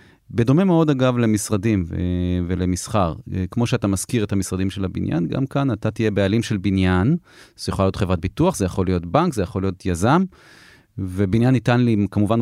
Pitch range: 100-125 Hz